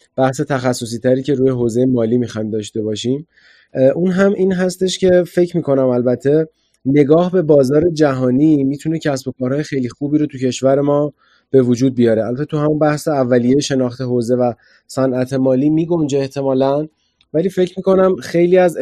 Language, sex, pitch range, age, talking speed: Persian, male, 130-150 Hz, 30-49, 165 wpm